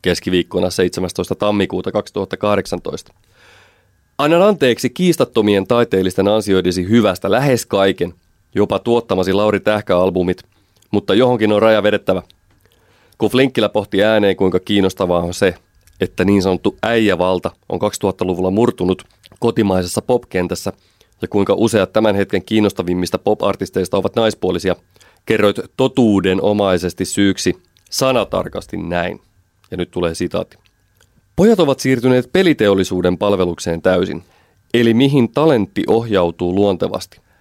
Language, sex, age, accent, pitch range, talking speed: Finnish, male, 30-49, native, 95-115 Hz, 105 wpm